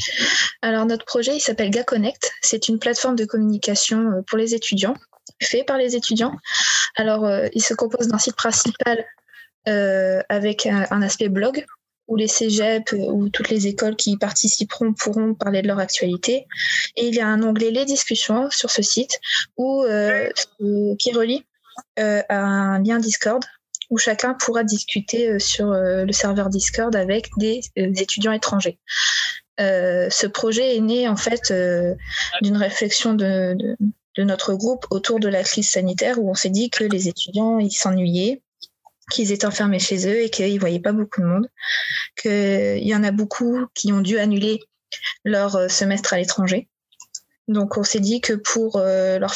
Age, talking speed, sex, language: 20-39, 180 wpm, female, French